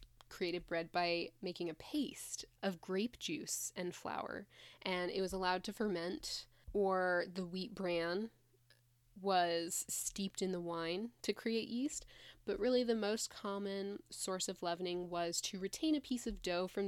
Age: 10-29